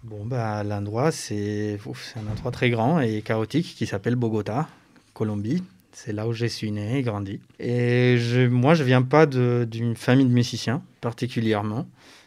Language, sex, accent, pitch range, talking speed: French, male, French, 110-135 Hz, 175 wpm